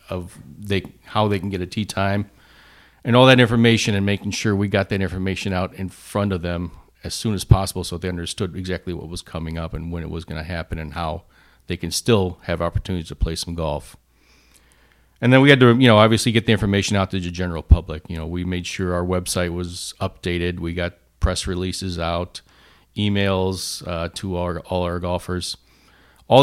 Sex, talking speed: male, 205 wpm